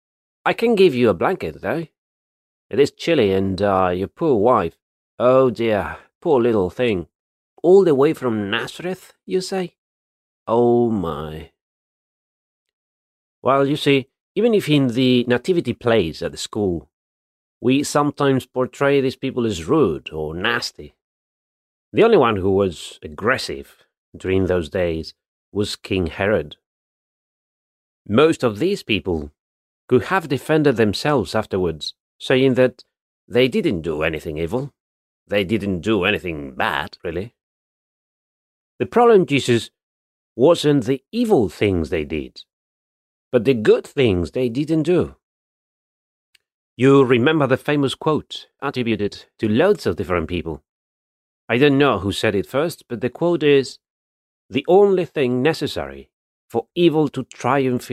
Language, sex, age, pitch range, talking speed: English, male, 30-49, 90-140 Hz, 135 wpm